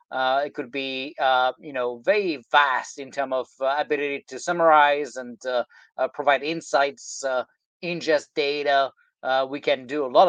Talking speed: 175 wpm